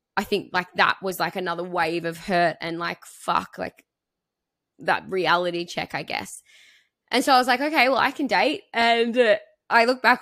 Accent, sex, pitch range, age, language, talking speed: Australian, female, 175-215 Hz, 10-29, English, 200 wpm